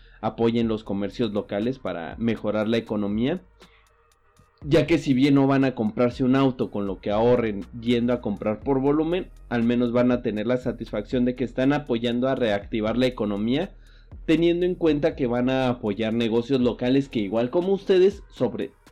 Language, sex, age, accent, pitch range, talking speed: Spanish, male, 30-49, Mexican, 110-140 Hz, 180 wpm